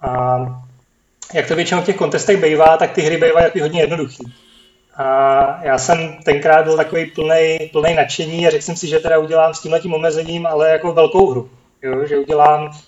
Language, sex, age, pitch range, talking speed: Czech, male, 30-49, 140-165 Hz, 185 wpm